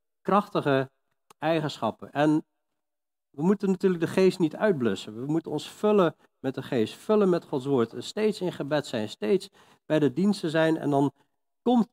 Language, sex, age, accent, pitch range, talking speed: Dutch, male, 40-59, Dutch, 145-190 Hz, 165 wpm